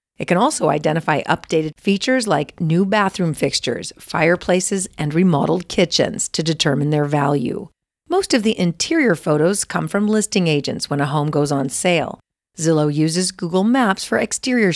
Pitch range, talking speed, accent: 155-215 Hz, 160 wpm, American